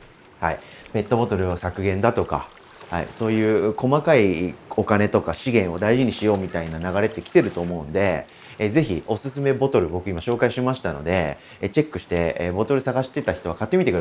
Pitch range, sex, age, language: 90-135 Hz, male, 30-49, Japanese